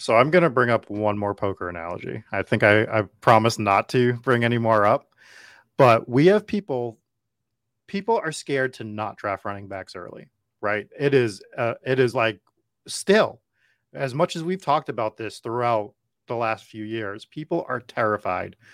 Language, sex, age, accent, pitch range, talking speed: English, male, 30-49, American, 110-135 Hz, 185 wpm